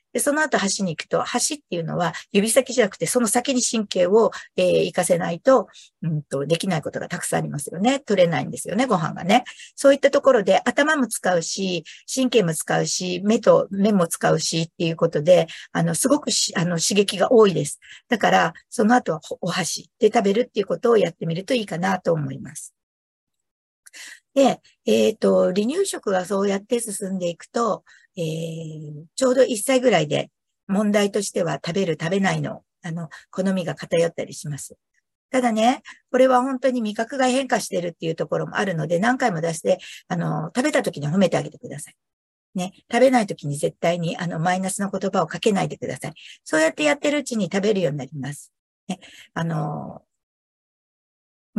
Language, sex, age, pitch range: Japanese, female, 50-69, 170-245 Hz